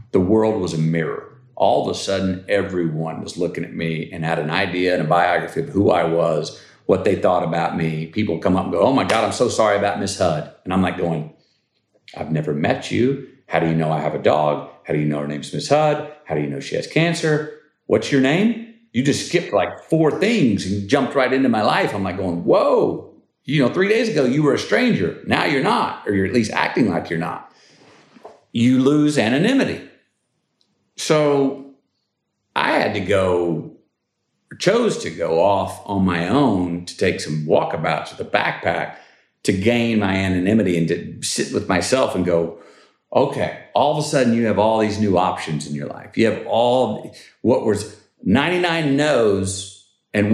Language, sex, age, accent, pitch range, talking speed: English, male, 40-59, American, 85-140 Hz, 200 wpm